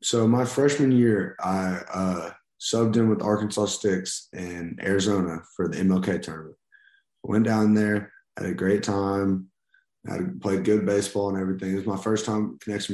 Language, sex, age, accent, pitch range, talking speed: English, male, 20-39, American, 95-100 Hz, 165 wpm